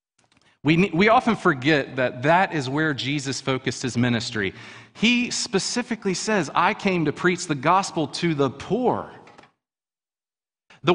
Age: 40-59